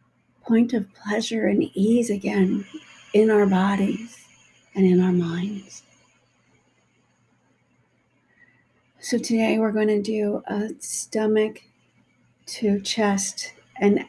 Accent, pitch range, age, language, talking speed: American, 200-245 Hz, 50-69, English, 100 wpm